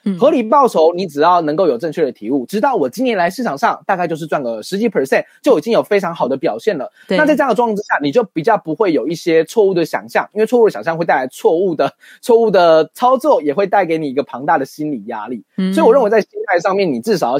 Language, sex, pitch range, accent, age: Chinese, male, 160-235 Hz, native, 20-39